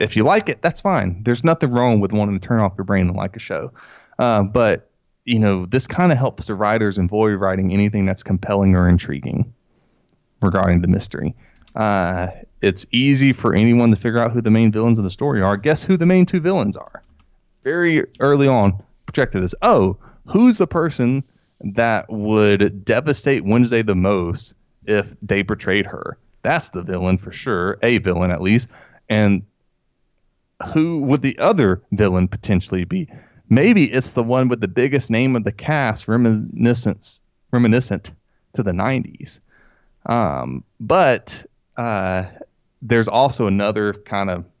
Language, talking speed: English, 165 wpm